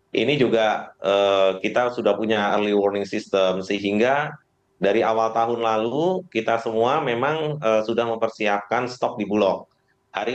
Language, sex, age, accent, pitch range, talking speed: Indonesian, male, 30-49, native, 105-130 Hz, 140 wpm